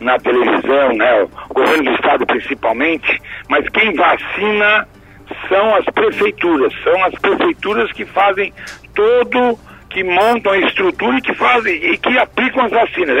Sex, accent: male, Brazilian